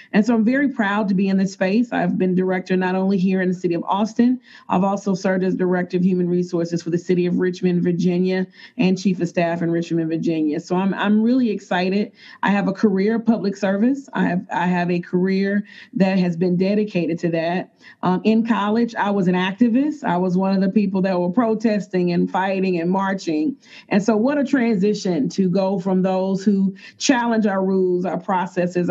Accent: American